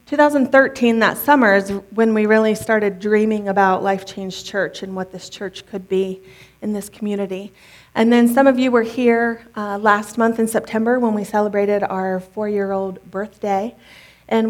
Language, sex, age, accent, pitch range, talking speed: English, female, 30-49, American, 200-245 Hz, 170 wpm